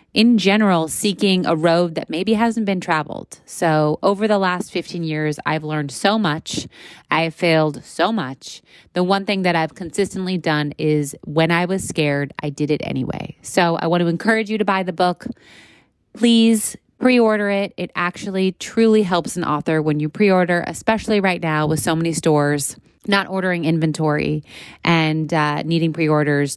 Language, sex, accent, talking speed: English, female, American, 175 wpm